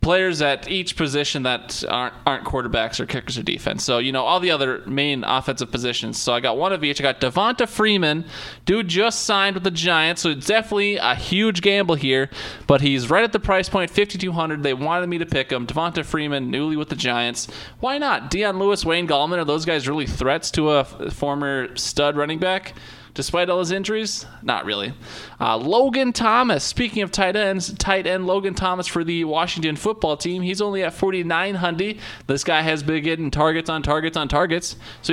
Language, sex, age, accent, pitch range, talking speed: English, male, 20-39, American, 140-185 Hz, 205 wpm